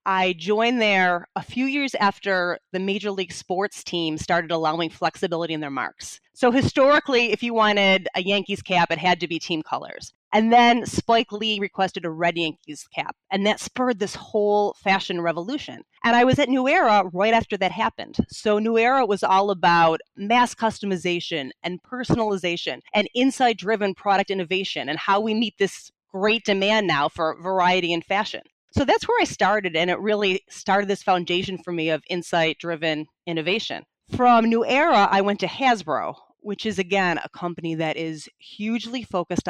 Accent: American